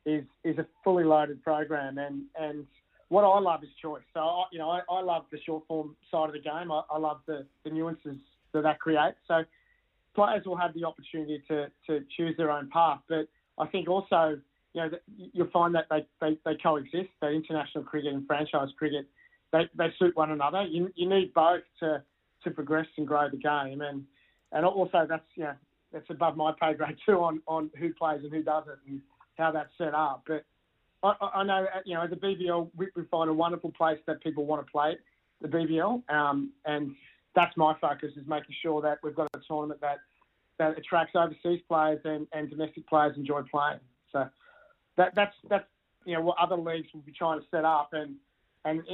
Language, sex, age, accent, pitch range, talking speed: English, male, 30-49, Australian, 150-170 Hz, 205 wpm